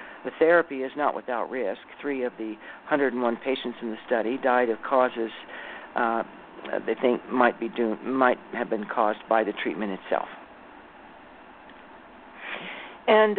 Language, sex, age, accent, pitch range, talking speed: English, male, 60-79, American, 130-160 Hz, 135 wpm